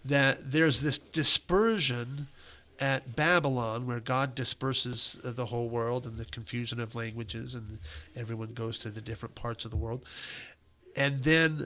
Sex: male